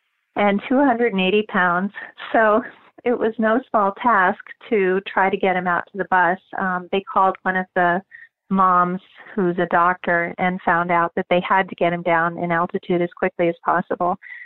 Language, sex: English, female